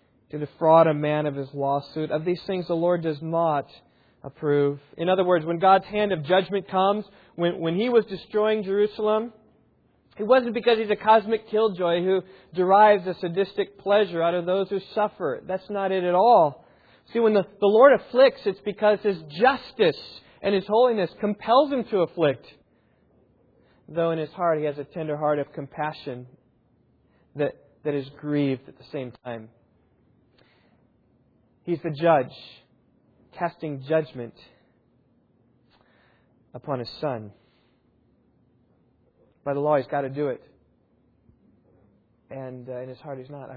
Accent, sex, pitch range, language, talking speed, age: American, male, 140-190 Hz, English, 155 wpm, 40-59